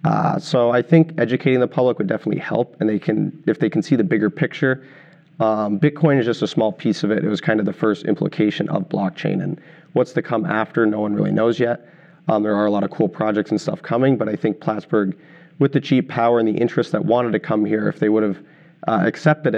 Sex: male